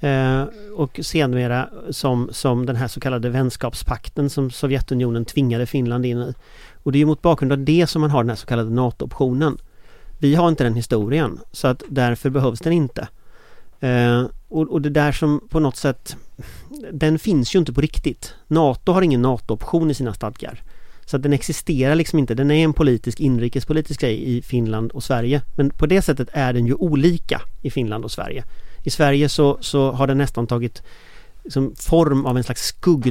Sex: male